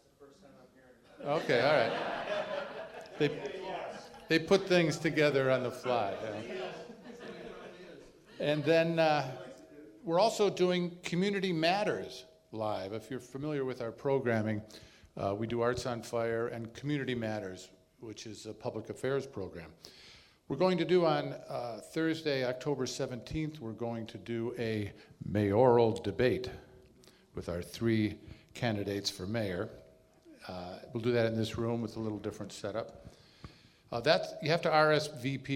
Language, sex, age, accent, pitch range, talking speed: English, male, 50-69, American, 105-140 Hz, 140 wpm